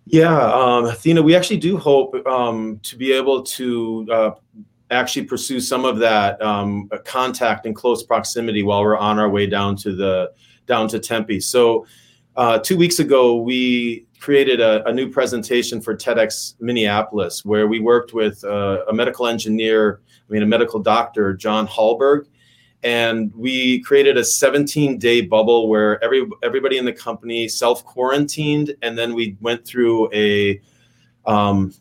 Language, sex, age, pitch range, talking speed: English, male, 30-49, 110-130 Hz, 160 wpm